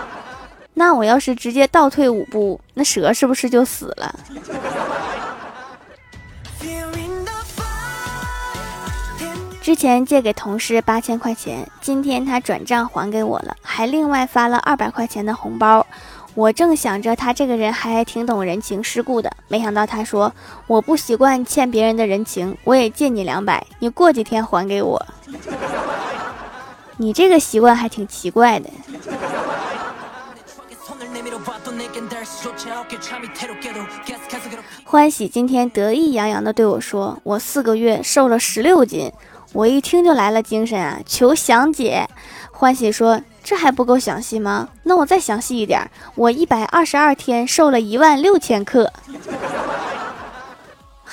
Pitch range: 220-280 Hz